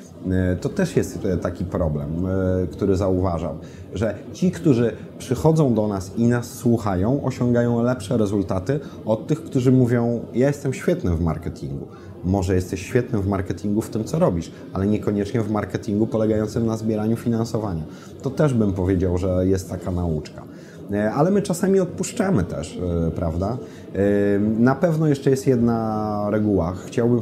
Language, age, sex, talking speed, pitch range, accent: Polish, 30-49, male, 150 wpm, 95-120 Hz, native